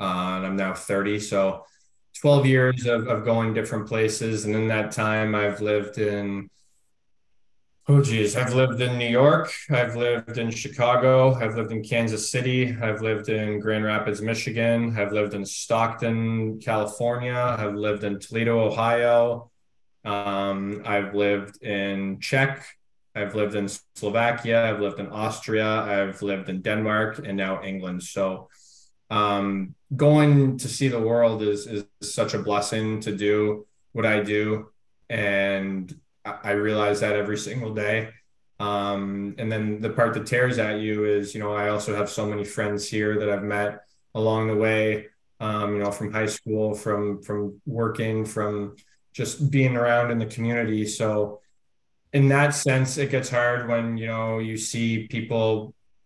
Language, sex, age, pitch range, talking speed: English, male, 20-39, 105-115 Hz, 160 wpm